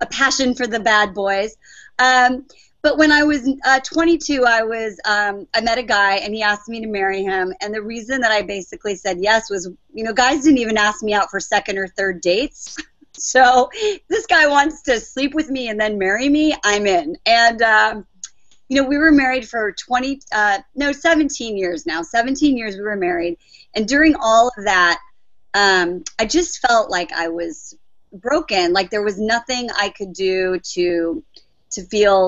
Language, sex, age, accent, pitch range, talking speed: English, female, 30-49, American, 195-255 Hz, 195 wpm